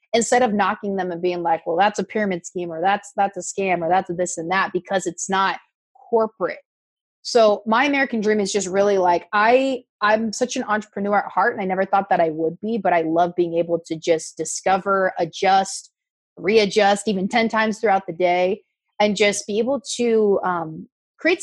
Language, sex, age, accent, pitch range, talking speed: English, female, 30-49, American, 180-220 Hz, 205 wpm